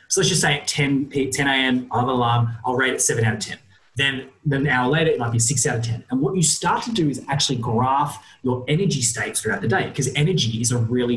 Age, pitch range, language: 20-39, 115-150 Hz, English